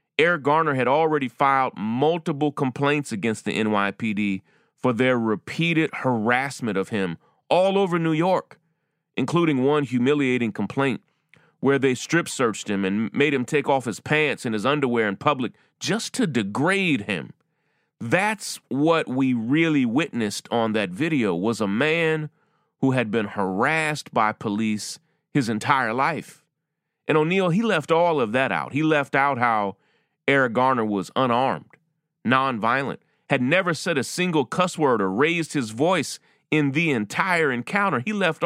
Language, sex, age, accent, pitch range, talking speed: English, male, 30-49, American, 120-165 Hz, 155 wpm